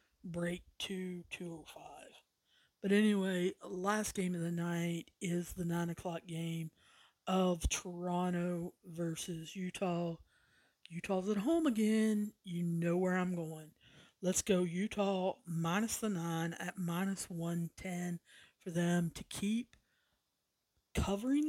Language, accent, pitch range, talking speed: English, American, 170-195 Hz, 115 wpm